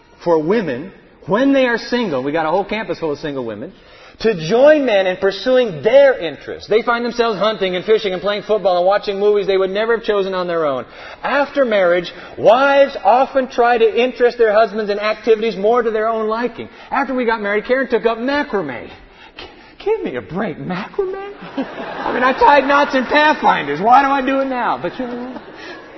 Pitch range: 185-240 Hz